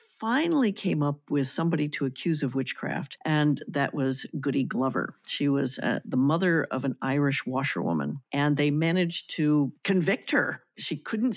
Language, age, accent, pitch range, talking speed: English, 50-69, American, 140-185 Hz, 165 wpm